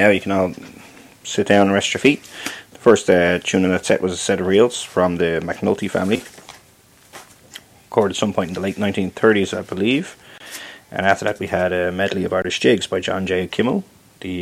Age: 20-39